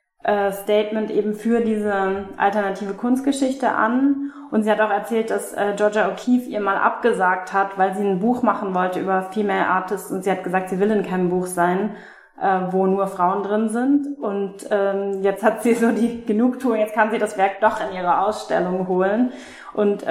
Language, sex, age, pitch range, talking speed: German, female, 20-39, 195-215 Hz, 180 wpm